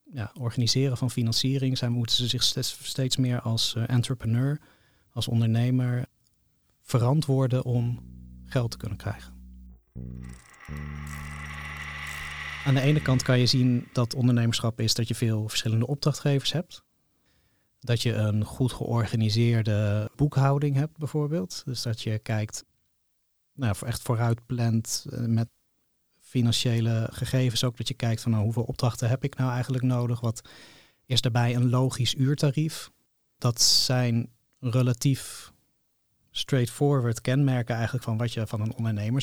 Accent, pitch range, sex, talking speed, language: Dutch, 115-130 Hz, male, 125 wpm, Dutch